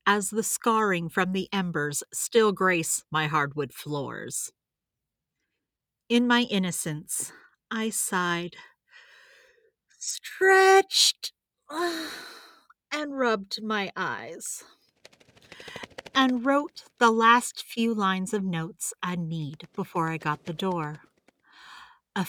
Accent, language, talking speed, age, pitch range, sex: American, English, 100 wpm, 40-59, 170-250 Hz, female